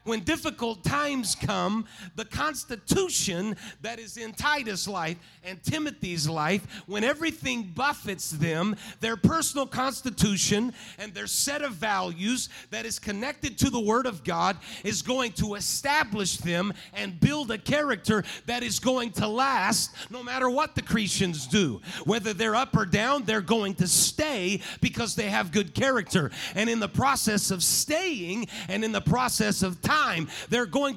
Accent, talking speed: American, 160 wpm